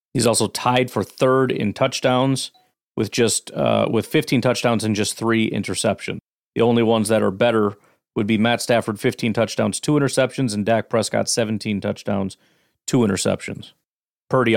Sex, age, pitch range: male, 40-59, 110-130 Hz